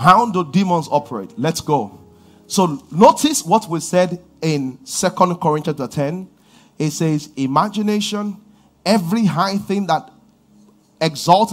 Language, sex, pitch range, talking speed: English, male, 135-205 Hz, 125 wpm